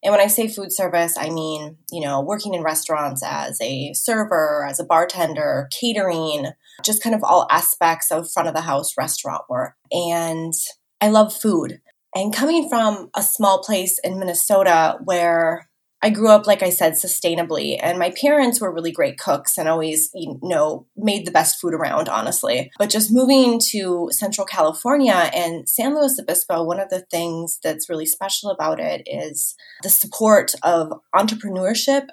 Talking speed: 170 wpm